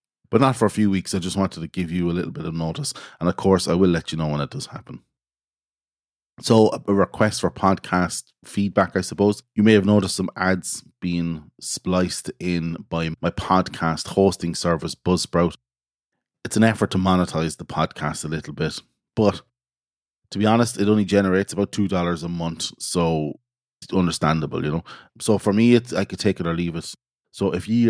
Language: English